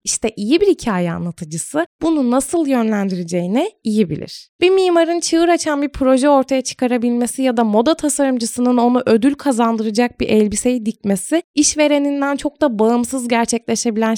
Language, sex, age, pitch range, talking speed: Turkish, female, 20-39, 200-270 Hz, 140 wpm